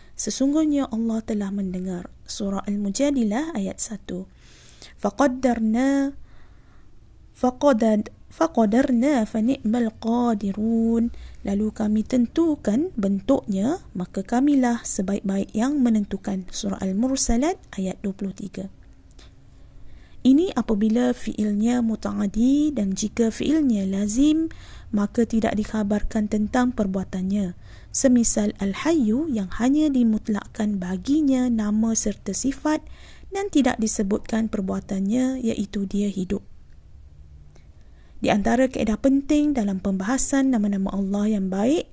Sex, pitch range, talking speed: female, 200-255 Hz, 95 wpm